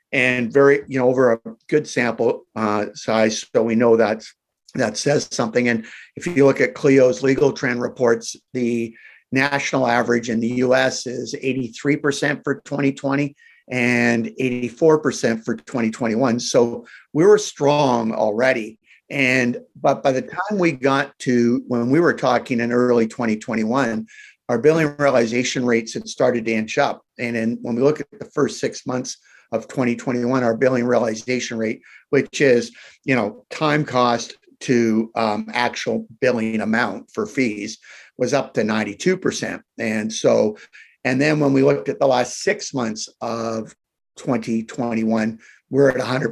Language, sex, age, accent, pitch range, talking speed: English, male, 50-69, American, 115-140 Hz, 150 wpm